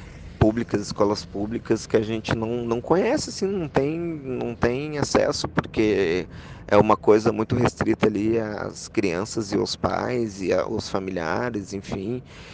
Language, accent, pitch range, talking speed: Portuguese, Brazilian, 100-110 Hz, 140 wpm